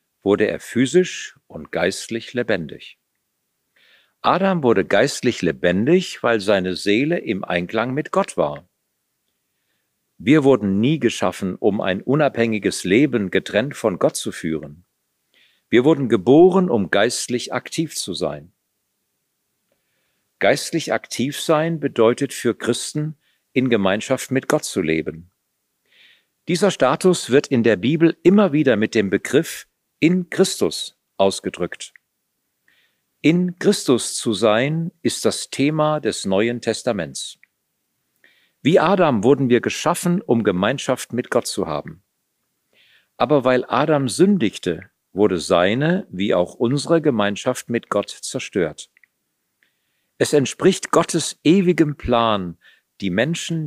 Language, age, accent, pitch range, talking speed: German, 50-69, German, 110-155 Hz, 120 wpm